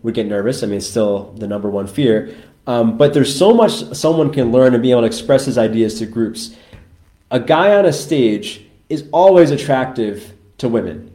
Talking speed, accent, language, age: 195 wpm, American, English, 20-39